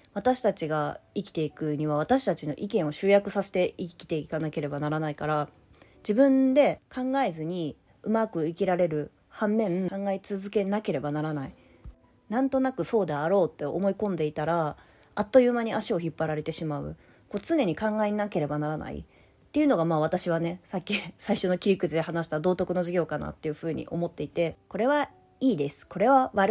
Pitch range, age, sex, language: 160-215 Hz, 20-39, female, Japanese